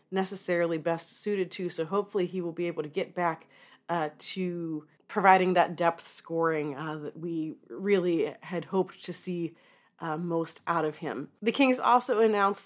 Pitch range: 160-195 Hz